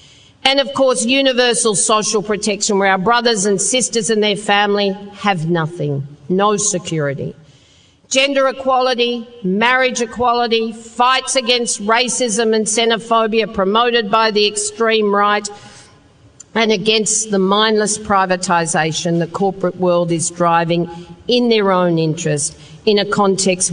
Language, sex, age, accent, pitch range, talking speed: English, female, 50-69, Australian, 180-230 Hz, 125 wpm